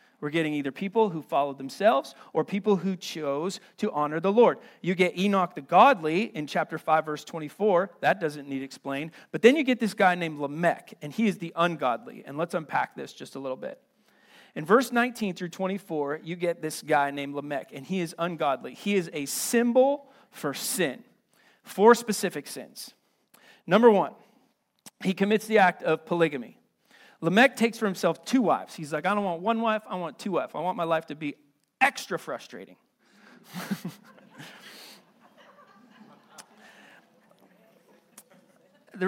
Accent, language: American, English